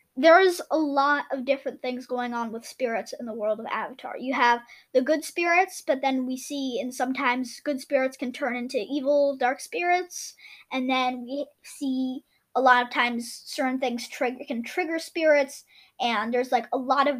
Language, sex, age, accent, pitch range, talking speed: English, female, 20-39, American, 255-315 Hz, 190 wpm